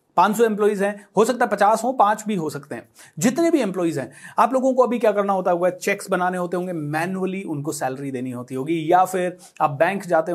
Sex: male